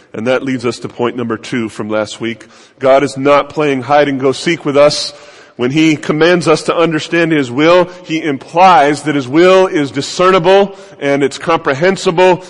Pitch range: 140-175 Hz